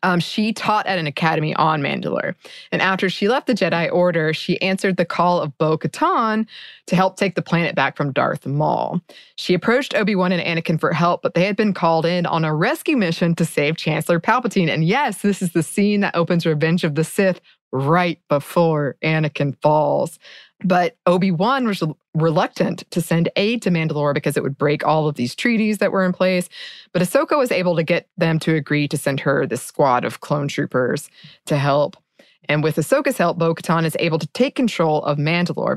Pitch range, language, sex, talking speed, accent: 155-195 Hz, English, female, 200 wpm, American